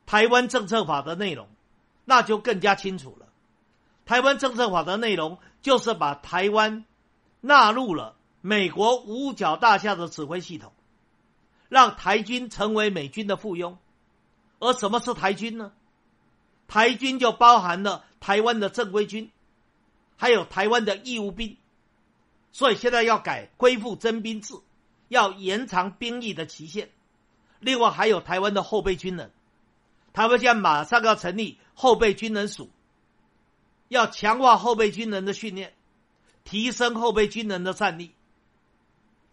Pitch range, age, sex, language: 190-240 Hz, 50-69, male, Chinese